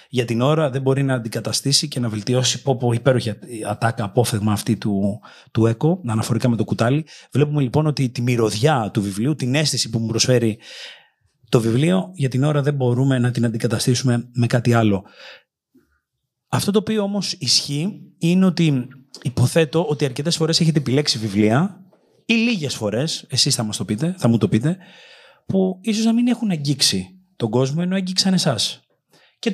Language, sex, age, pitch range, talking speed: Greek, male, 30-49, 115-155 Hz, 175 wpm